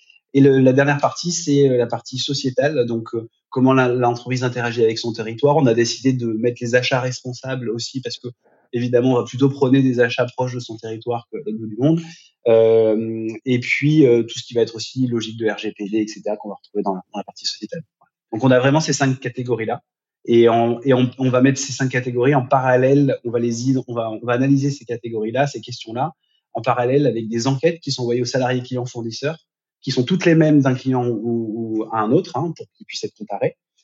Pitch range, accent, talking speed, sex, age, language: 120-145 Hz, French, 225 wpm, male, 20-39, French